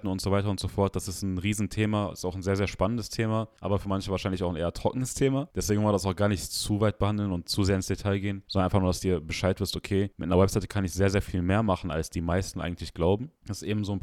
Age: 10-29